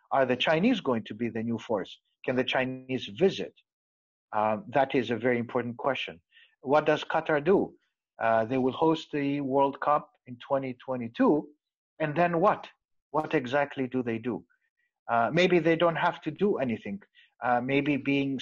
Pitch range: 120-155 Hz